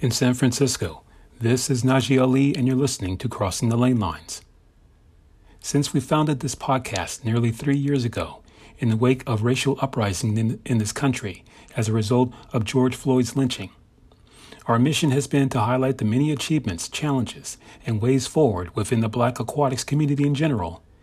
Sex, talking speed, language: male, 175 wpm, English